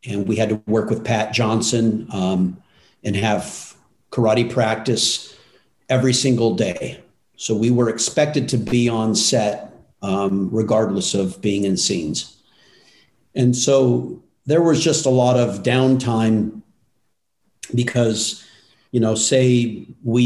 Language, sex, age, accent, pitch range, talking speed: English, male, 50-69, American, 110-130 Hz, 130 wpm